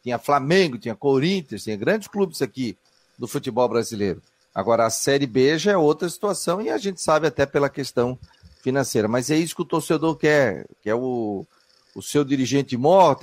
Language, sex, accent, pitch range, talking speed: Portuguese, male, Brazilian, 115-160 Hz, 180 wpm